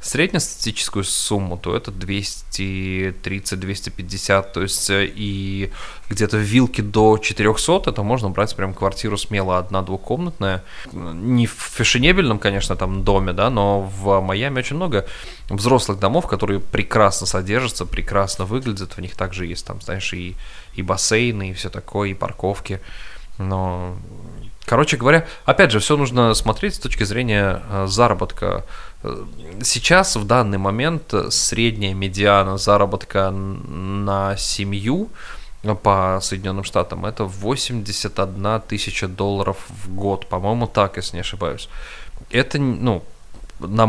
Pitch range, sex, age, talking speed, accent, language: 95-110 Hz, male, 20-39, 125 wpm, native, Russian